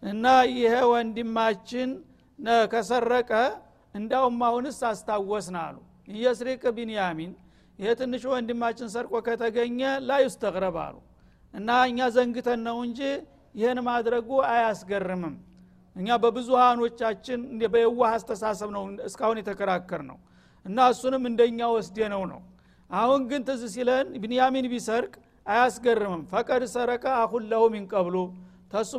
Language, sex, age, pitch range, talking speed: Amharic, male, 60-79, 215-245 Hz, 95 wpm